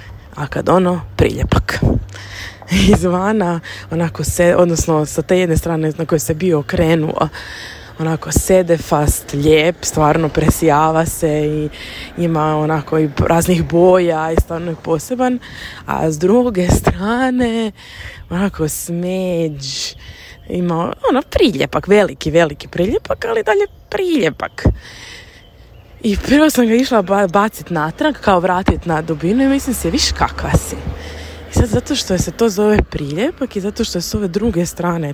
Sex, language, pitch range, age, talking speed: female, Croatian, 155-200 Hz, 20-39, 140 wpm